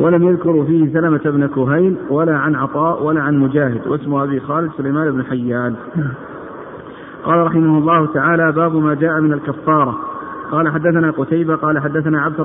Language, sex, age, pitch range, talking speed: Arabic, male, 50-69, 145-165 Hz, 160 wpm